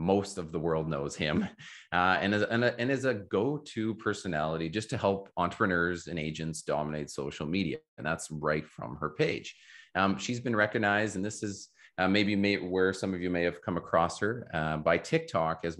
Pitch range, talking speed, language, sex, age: 80-100 Hz, 200 wpm, English, male, 30-49